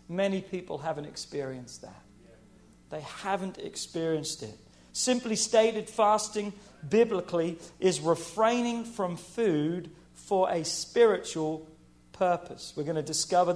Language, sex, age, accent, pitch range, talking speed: English, male, 40-59, British, 155-210 Hz, 110 wpm